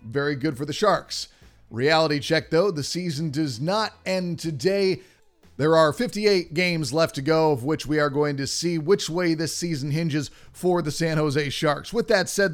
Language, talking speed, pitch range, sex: English, 195 wpm, 160-195 Hz, male